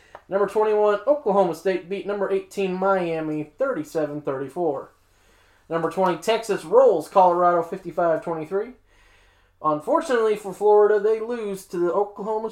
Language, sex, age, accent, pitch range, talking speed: English, male, 20-39, American, 155-200 Hz, 110 wpm